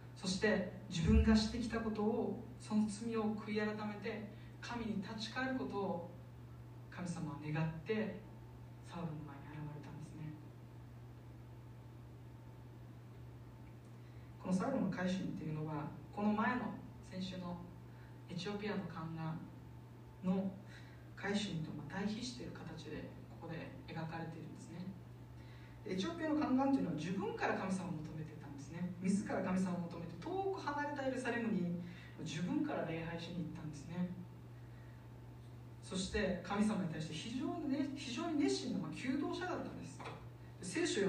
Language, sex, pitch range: Japanese, female, 135-210 Hz